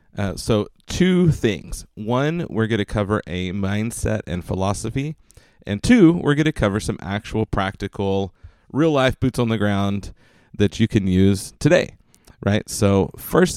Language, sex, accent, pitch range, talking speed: English, male, American, 95-120 Hz, 155 wpm